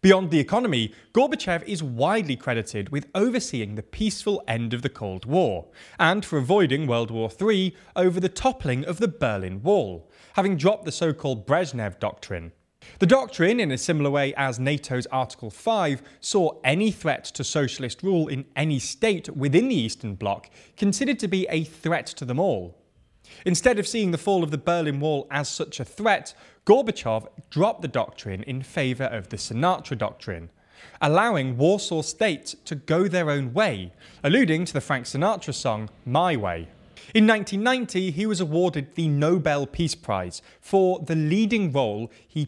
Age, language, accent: 20-39, English, British